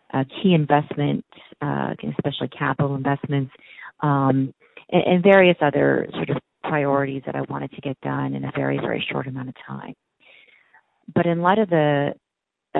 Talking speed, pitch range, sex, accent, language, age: 160 wpm, 140-160 Hz, female, American, English, 30-49